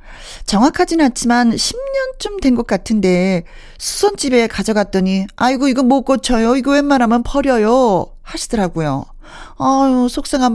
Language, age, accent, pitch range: Korean, 40-59, native, 195-280 Hz